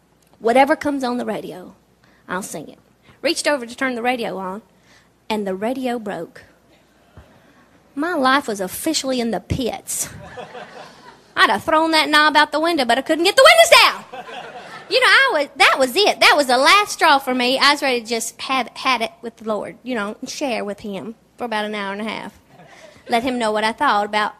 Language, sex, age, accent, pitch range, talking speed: English, female, 30-49, American, 235-305 Hz, 210 wpm